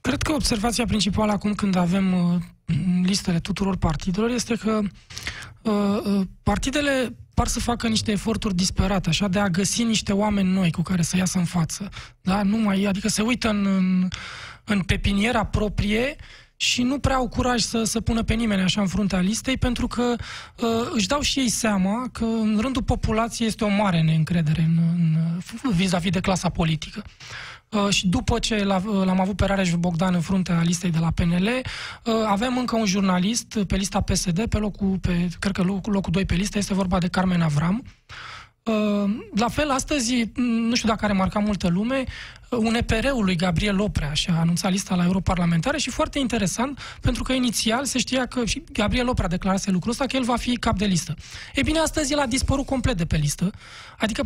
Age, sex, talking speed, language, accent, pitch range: 20-39, male, 195 wpm, Romanian, native, 185-240 Hz